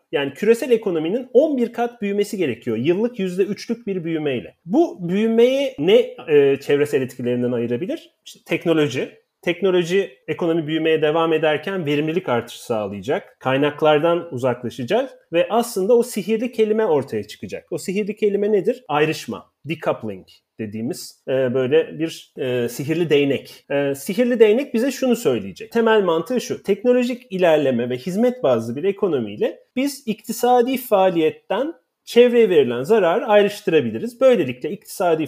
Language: Turkish